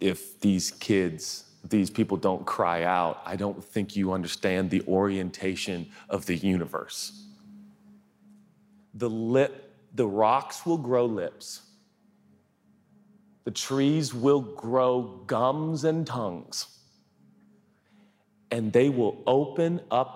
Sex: male